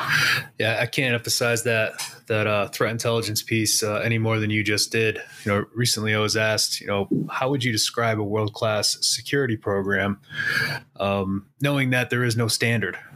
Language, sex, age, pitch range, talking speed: English, male, 20-39, 105-120 Hz, 180 wpm